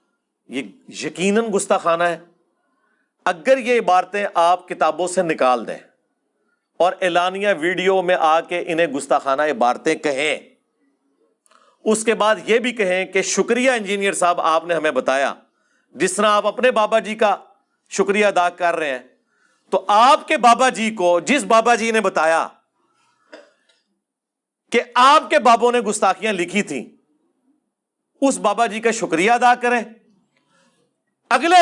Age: 40-59